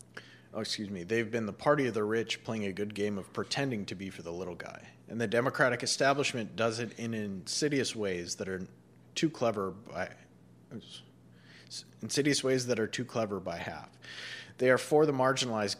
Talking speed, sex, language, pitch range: 185 wpm, male, English, 95-125 Hz